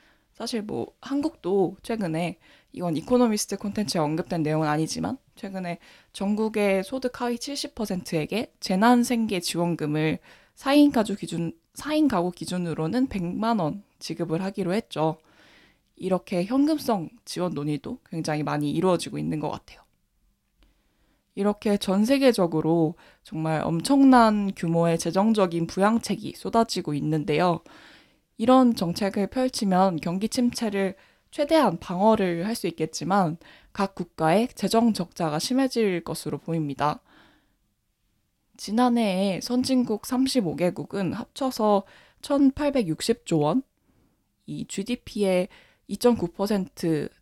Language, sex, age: Korean, female, 20-39